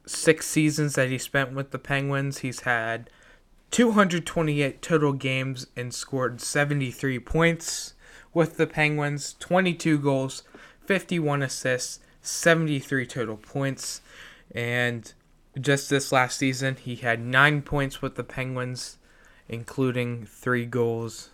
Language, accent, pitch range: English, American, 120-140 Hz